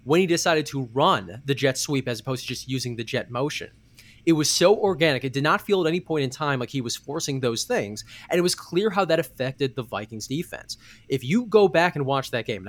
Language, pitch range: English, 120-160 Hz